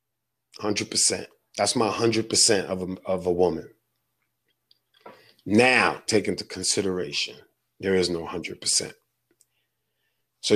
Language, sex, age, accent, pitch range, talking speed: English, male, 30-49, American, 105-145 Hz, 120 wpm